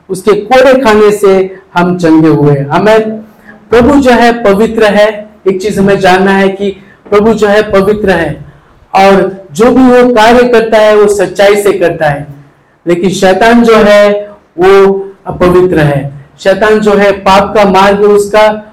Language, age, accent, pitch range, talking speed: Hindi, 50-69, native, 180-215 Hz, 155 wpm